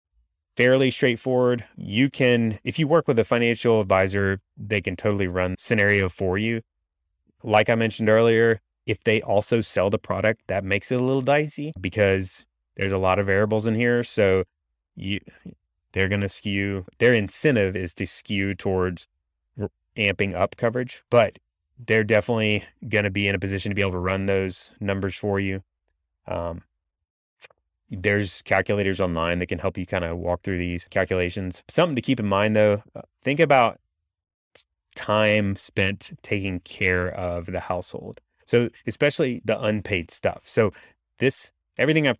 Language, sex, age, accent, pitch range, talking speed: English, male, 20-39, American, 90-115 Hz, 160 wpm